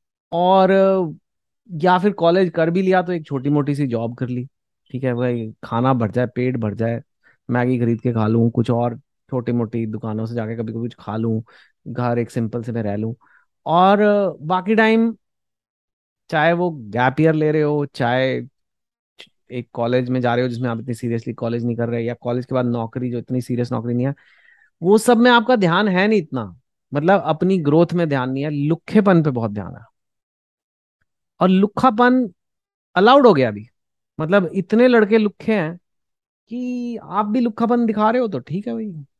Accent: Indian